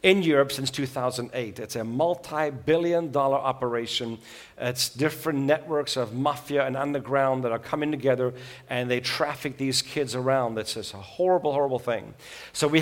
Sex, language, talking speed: male, English, 160 wpm